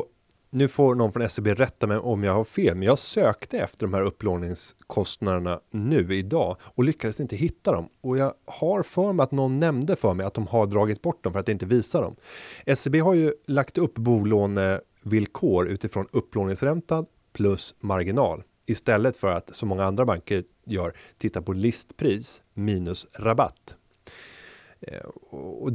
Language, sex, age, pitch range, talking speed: Swedish, male, 30-49, 95-125 Hz, 165 wpm